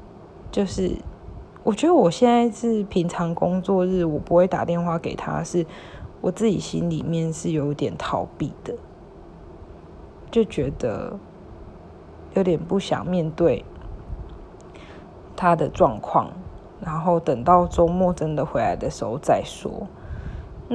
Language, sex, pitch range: Chinese, female, 165-190 Hz